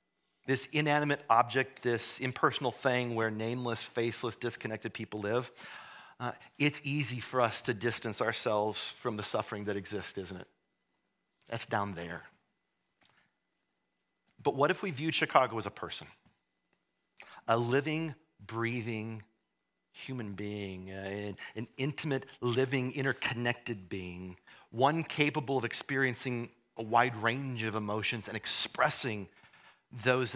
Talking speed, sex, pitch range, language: 125 wpm, male, 110-135 Hz, English